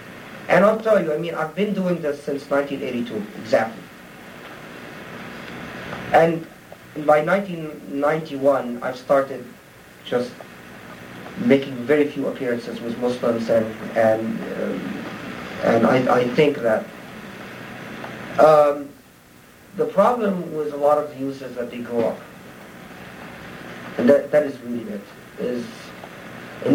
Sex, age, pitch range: male, 40-59, 110-140 Hz